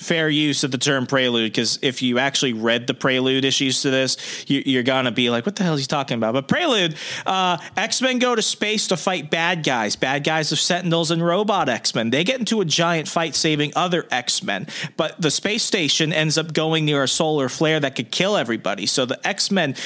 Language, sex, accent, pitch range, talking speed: English, male, American, 135-165 Hz, 225 wpm